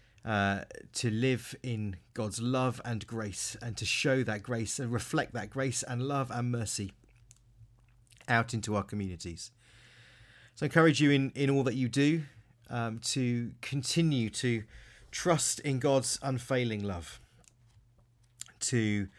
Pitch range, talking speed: 110-130 Hz, 140 wpm